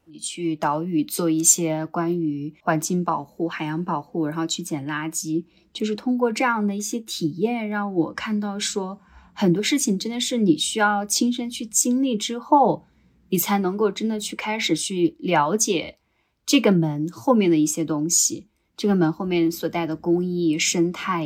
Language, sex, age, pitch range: Chinese, female, 20-39, 165-205 Hz